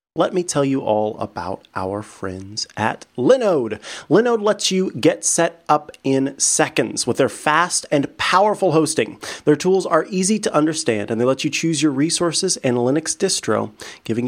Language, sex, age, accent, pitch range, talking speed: English, male, 30-49, American, 120-180 Hz, 170 wpm